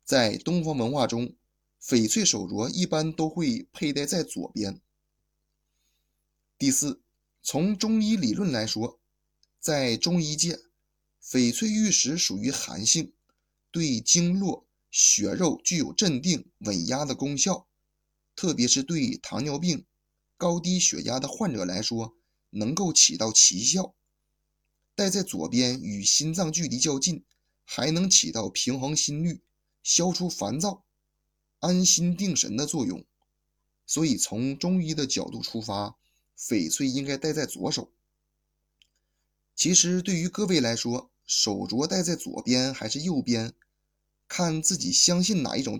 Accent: native